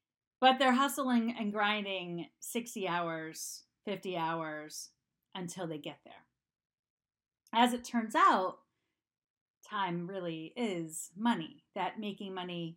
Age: 40-59